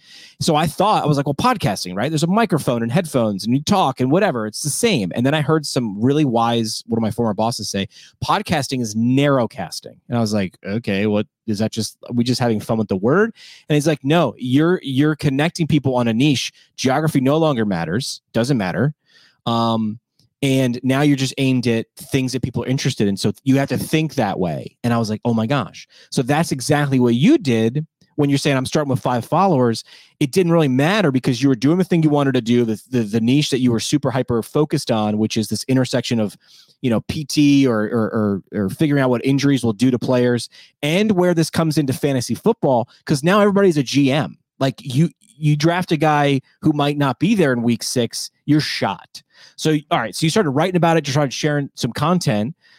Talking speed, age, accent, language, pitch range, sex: 225 wpm, 30-49, American, English, 120-155 Hz, male